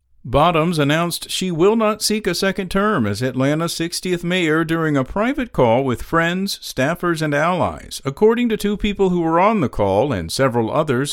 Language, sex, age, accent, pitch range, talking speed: English, male, 50-69, American, 130-190 Hz, 185 wpm